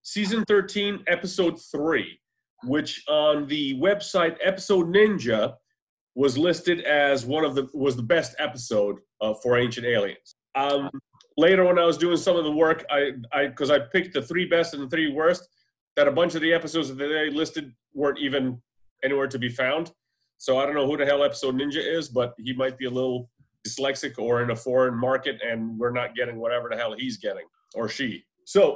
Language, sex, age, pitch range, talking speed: English, male, 30-49, 130-180 Hz, 200 wpm